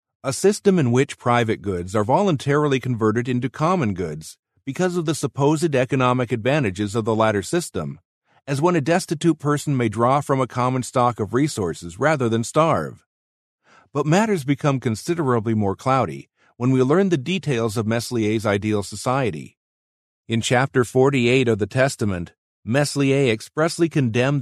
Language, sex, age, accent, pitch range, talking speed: English, male, 50-69, American, 110-145 Hz, 150 wpm